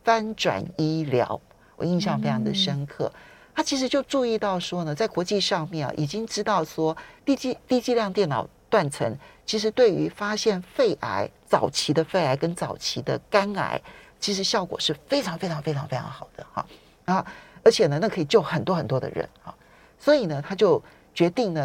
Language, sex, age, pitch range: Chinese, male, 40-59, 150-205 Hz